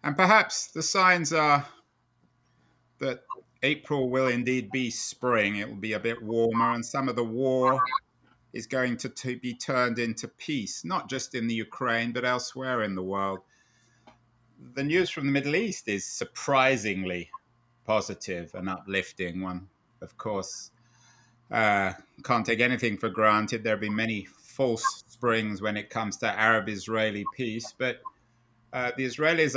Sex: male